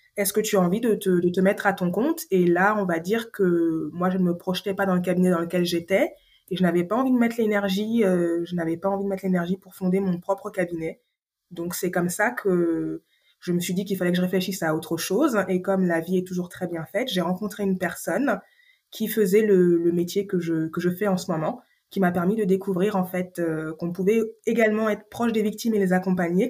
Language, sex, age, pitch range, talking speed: French, female, 20-39, 175-205 Hz, 255 wpm